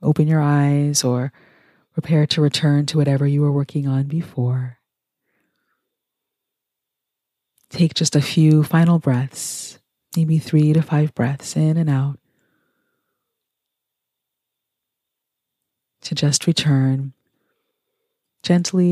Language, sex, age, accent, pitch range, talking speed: English, female, 30-49, American, 140-165 Hz, 100 wpm